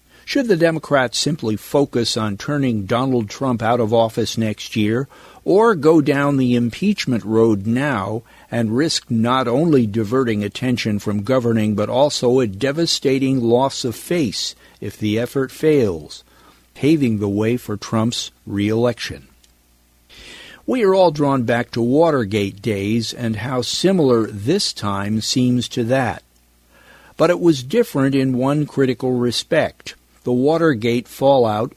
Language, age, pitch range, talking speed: English, 50-69, 110-135 Hz, 140 wpm